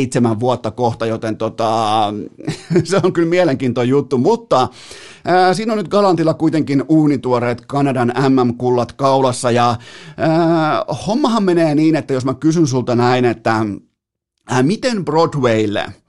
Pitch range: 120-155 Hz